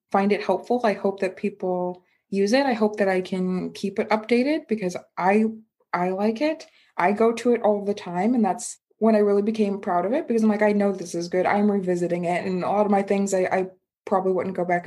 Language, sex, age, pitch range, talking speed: English, female, 20-39, 200-245 Hz, 245 wpm